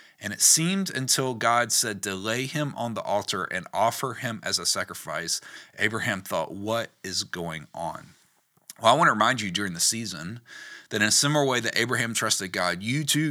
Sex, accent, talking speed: male, American, 195 wpm